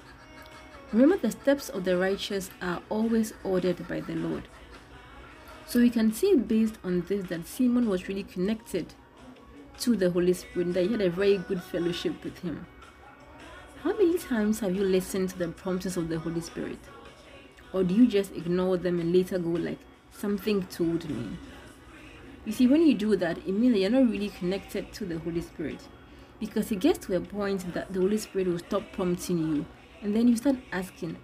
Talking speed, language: 190 wpm, English